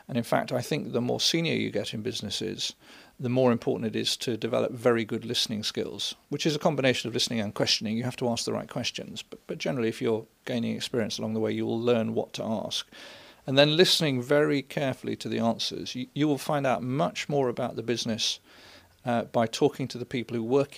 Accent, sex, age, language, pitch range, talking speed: British, male, 40-59, English, 115-135 Hz, 230 wpm